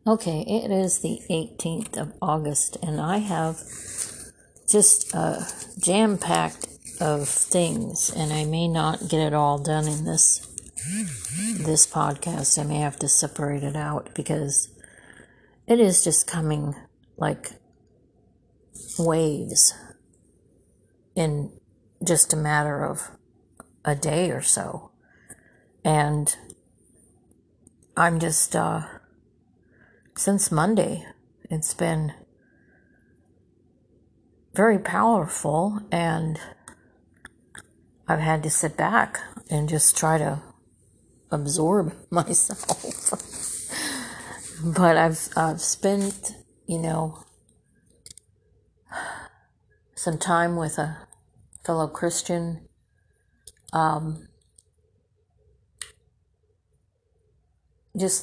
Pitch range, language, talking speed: 120-170 Hz, English, 90 wpm